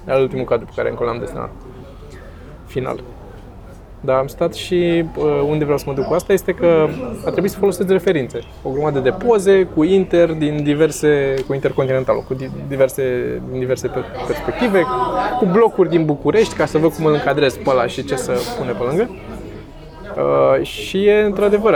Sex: male